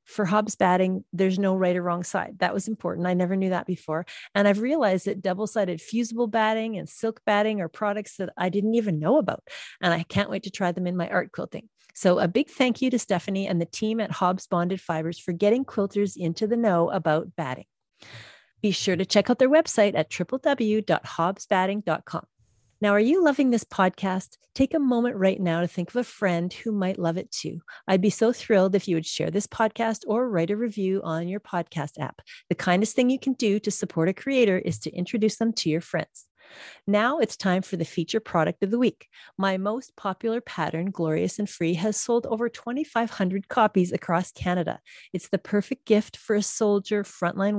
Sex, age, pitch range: female, 40-59, 180-225 Hz